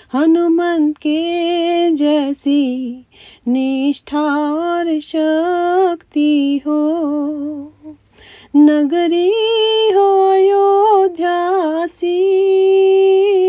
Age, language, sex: 40-59, Hindi, female